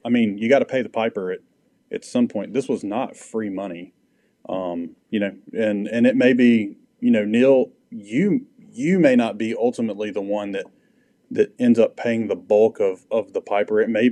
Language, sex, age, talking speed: English, male, 30-49, 205 wpm